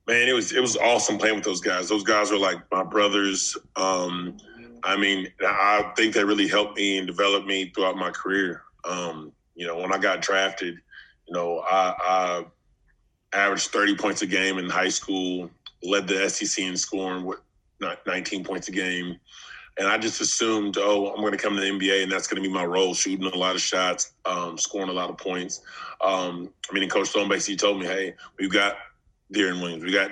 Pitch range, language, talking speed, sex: 90-100 Hz, English, 215 wpm, male